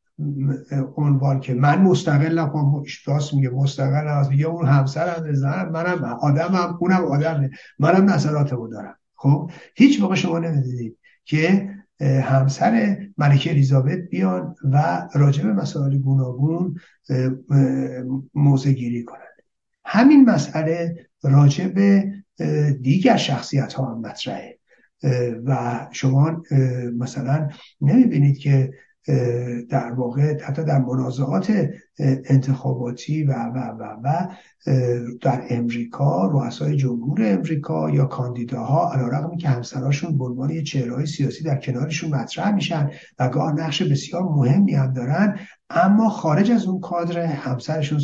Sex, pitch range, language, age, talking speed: male, 135-165 Hz, Persian, 60-79, 110 wpm